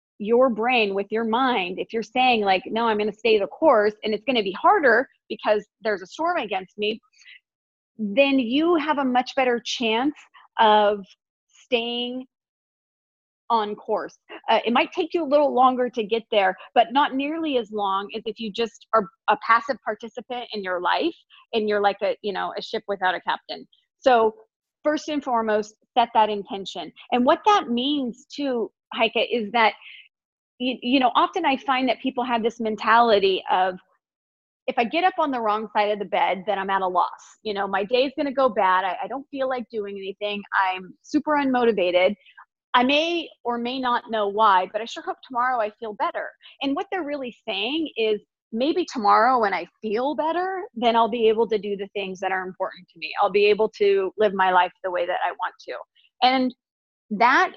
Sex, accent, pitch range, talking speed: female, American, 210-265 Hz, 200 wpm